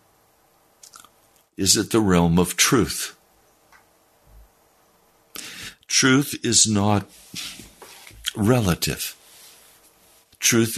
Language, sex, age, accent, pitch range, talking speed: English, male, 60-79, American, 105-130 Hz, 60 wpm